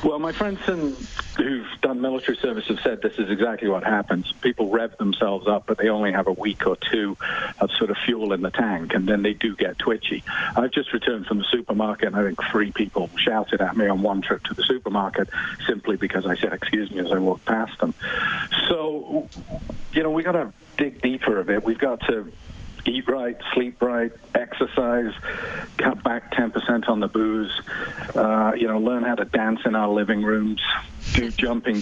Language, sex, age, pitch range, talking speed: English, male, 50-69, 100-120 Hz, 200 wpm